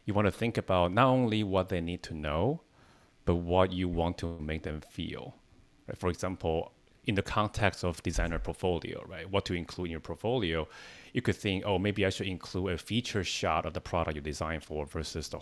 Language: English